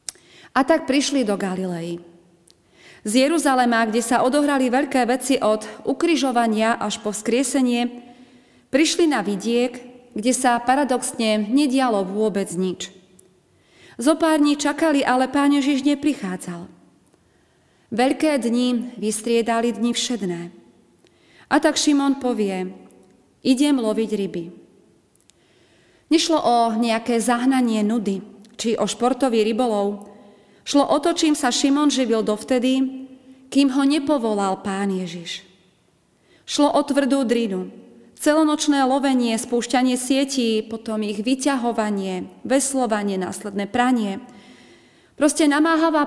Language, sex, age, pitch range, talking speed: Slovak, female, 30-49, 210-275 Hz, 105 wpm